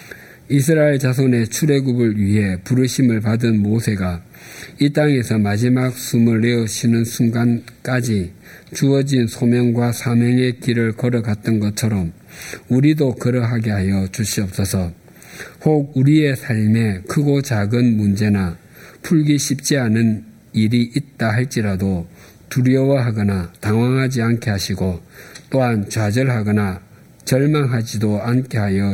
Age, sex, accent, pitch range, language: 50-69, male, native, 100-130 Hz, Korean